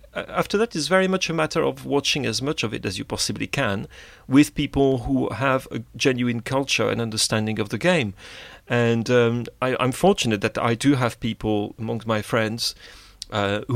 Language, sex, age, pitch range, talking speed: English, male, 40-59, 110-145 Hz, 190 wpm